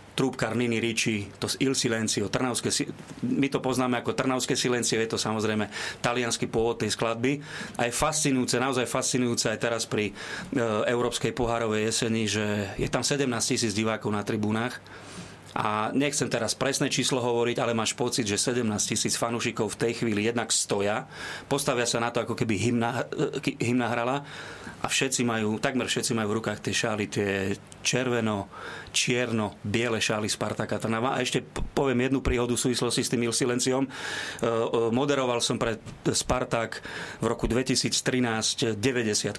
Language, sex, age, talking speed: Slovak, male, 30-49, 155 wpm